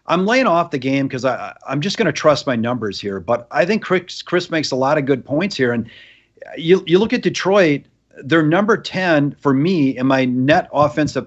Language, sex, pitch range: English, male, 125-165 Hz